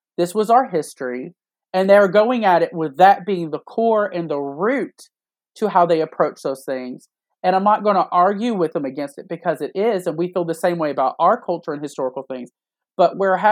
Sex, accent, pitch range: male, American, 160-210 Hz